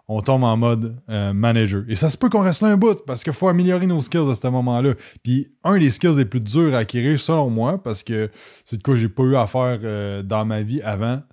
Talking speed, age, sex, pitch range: 265 wpm, 20-39, male, 115-145 Hz